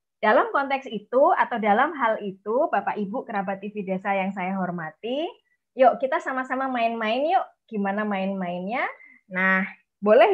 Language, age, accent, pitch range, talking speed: Indonesian, 20-39, native, 210-295 Hz, 140 wpm